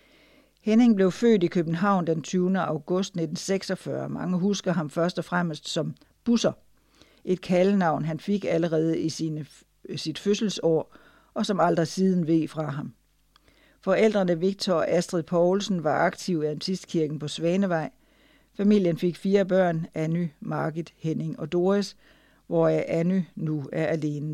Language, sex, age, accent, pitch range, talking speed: Danish, female, 60-79, native, 160-195 Hz, 140 wpm